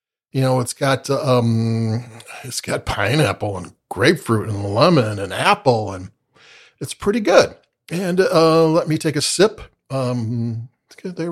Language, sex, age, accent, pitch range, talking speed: English, male, 50-69, American, 120-160 Hz, 145 wpm